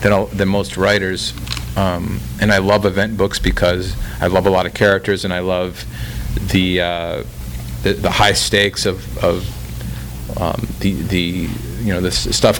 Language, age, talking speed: English, 40-59, 160 wpm